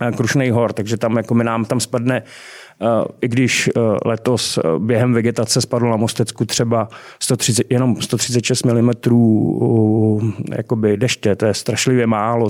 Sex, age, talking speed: male, 30-49, 130 wpm